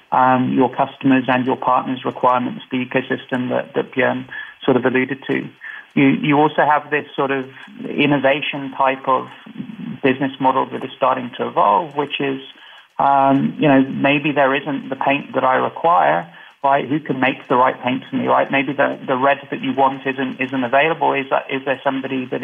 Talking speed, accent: 195 wpm, British